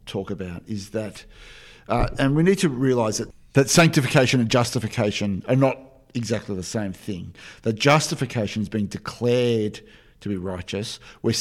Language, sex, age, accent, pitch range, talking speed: English, male, 50-69, Australian, 100-125 Hz, 160 wpm